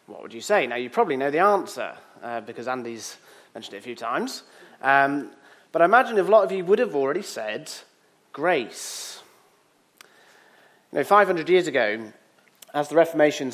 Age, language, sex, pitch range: 30-49, English, male, 135-190 Hz